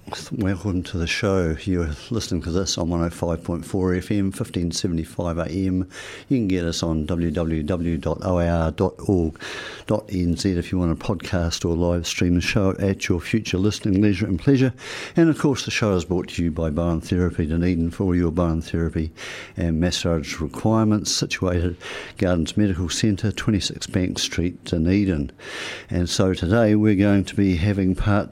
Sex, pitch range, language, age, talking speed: male, 85-105 Hz, English, 60-79, 155 wpm